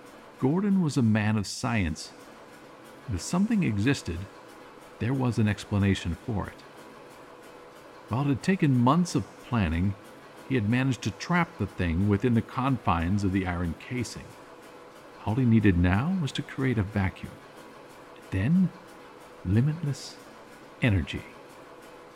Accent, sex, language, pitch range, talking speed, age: American, male, English, 90-120 Hz, 130 wpm, 50-69